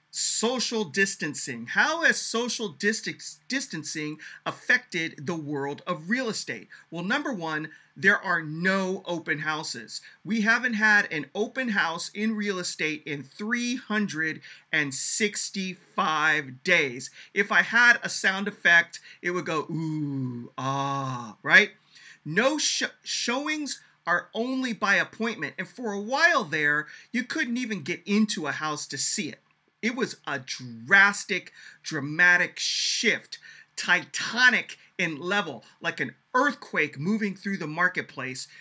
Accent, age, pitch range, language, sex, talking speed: American, 40-59, 155-215 Hz, English, male, 125 wpm